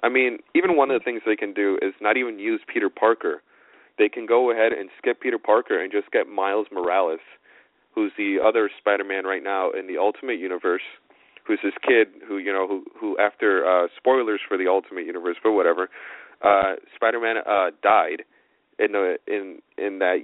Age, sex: 30-49, male